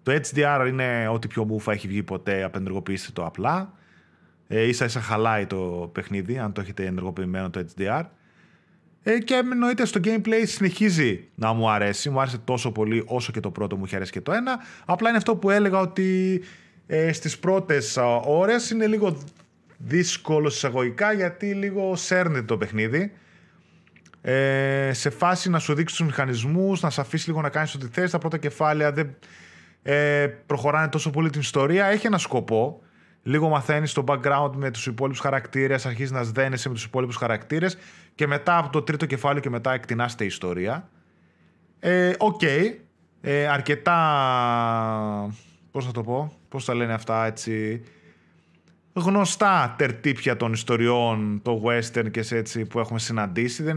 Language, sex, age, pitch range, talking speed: Greek, male, 30-49, 110-165 Hz, 160 wpm